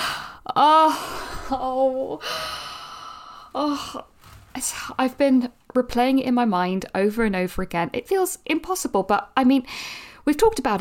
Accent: British